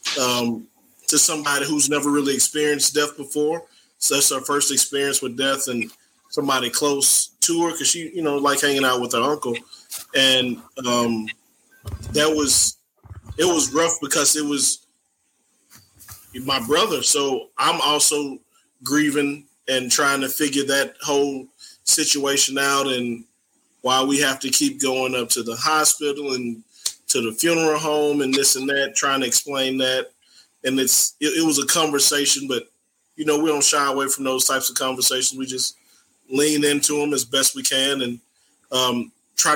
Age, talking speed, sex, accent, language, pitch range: 20-39, 165 wpm, male, American, English, 130-150 Hz